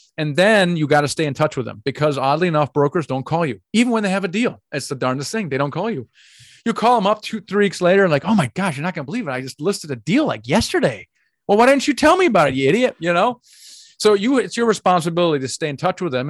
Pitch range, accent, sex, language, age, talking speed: 130-180 Hz, American, male, English, 30-49, 295 wpm